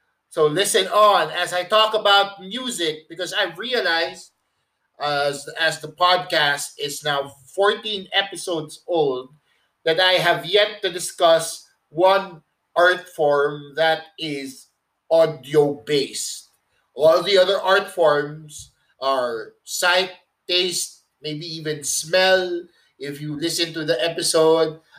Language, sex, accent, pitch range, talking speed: English, male, Filipino, 155-185 Hz, 120 wpm